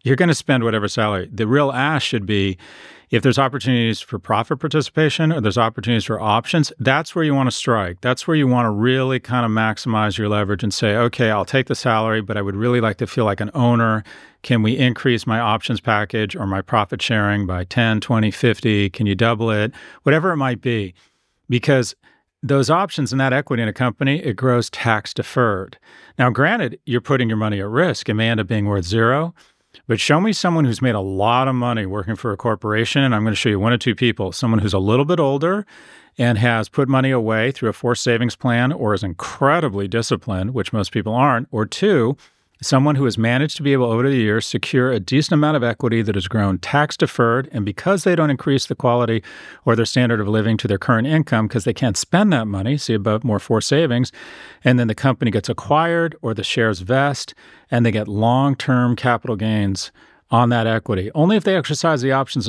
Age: 40-59